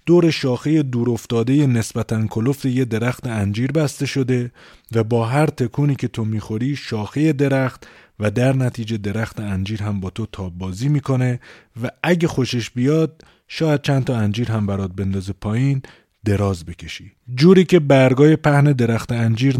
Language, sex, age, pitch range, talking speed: Persian, male, 30-49, 105-135 Hz, 155 wpm